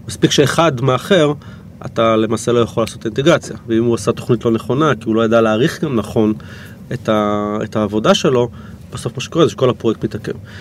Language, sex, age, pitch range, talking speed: Hebrew, male, 30-49, 105-130 Hz, 190 wpm